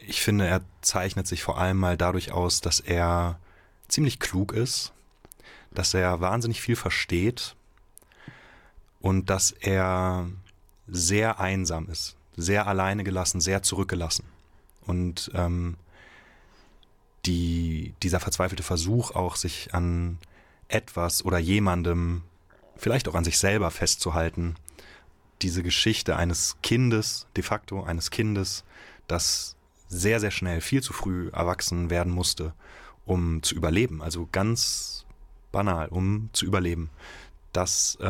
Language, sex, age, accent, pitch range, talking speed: German, male, 30-49, German, 85-95 Hz, 120 wpm